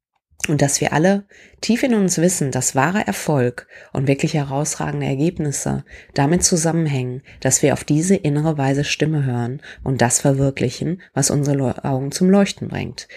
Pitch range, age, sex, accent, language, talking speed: 135-180 Hz, 30-49, female, German, German, 160 wpm